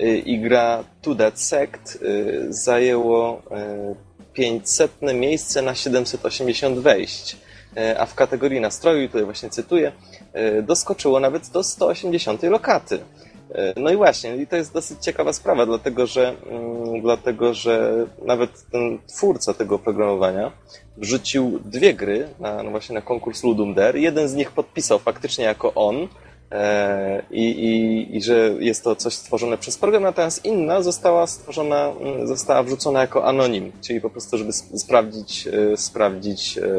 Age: 20-39